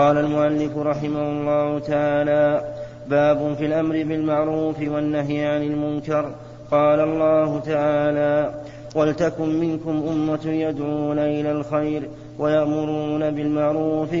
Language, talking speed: Arabic, 95 wpm